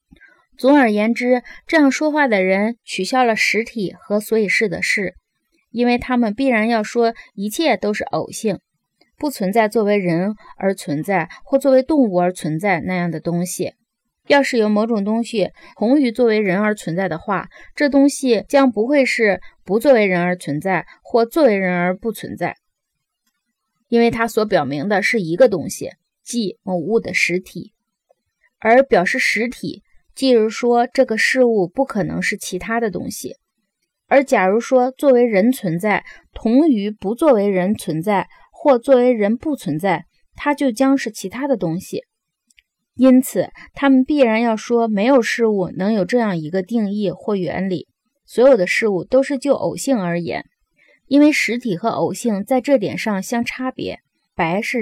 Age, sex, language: 20-39, female, Chinese